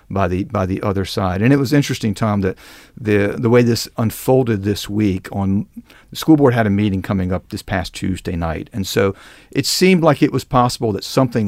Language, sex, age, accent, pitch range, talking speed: English, male, 50-69, American, 95-125 Hz, 220 wpm